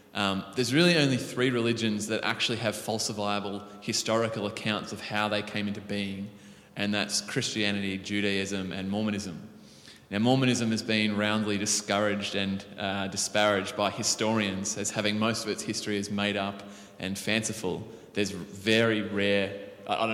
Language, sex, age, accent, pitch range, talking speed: English, male, 20-39, Australian, 100-120 Hz, 150 wpm